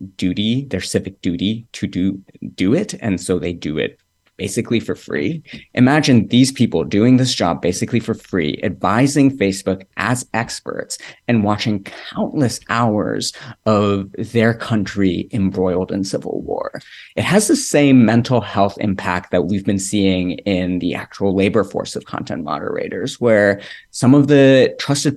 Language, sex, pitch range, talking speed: English, male, 95-120 Hz, 155 wpm